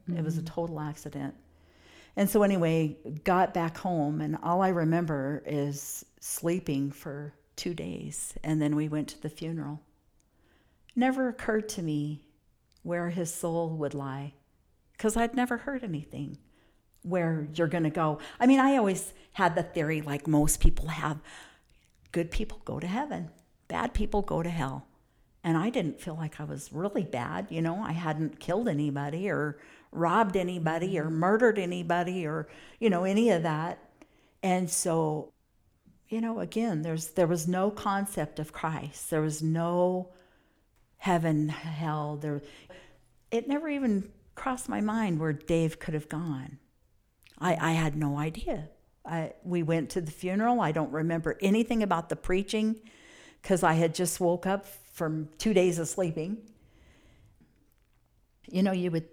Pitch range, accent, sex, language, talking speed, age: 150-190 Hz, American, female, English, 160 wpm, 50-69